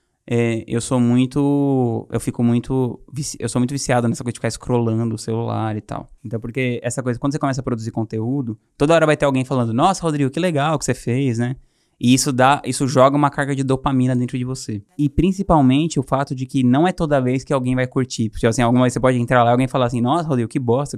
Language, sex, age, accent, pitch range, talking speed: Portuguese, male, 20-39, Brazilian, 115-140 Hz, 245 wpm